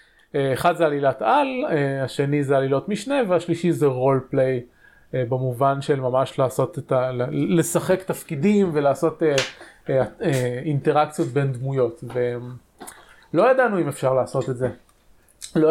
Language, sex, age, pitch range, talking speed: Hebrew, male, 20-39, 140-175 Hz, 120 wpm